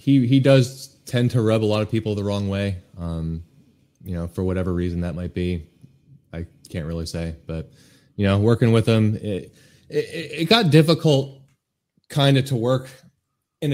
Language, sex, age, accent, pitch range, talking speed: English, male, 20-39, American, 90-115 Hz, 185 wpm